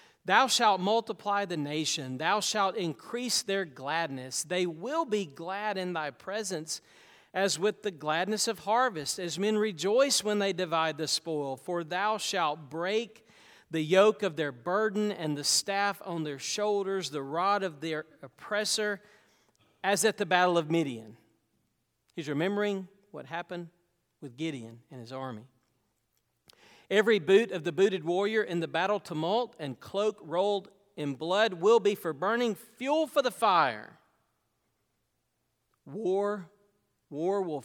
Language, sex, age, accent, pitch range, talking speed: English, male, 40-59, American, 150-205 Hz, 145 wpm